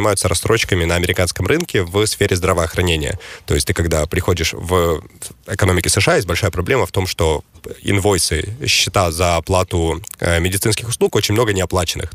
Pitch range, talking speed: 85-105 Hz, 165 wpm